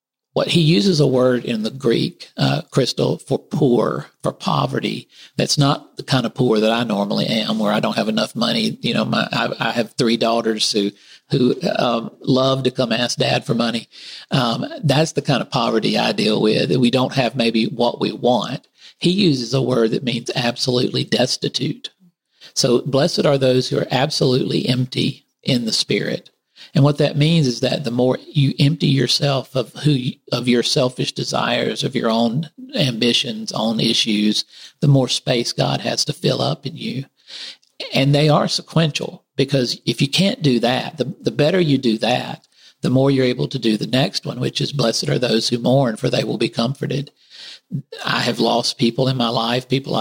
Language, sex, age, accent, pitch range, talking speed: English, male, 50-69, American, 120-145 Hz, 195 wpm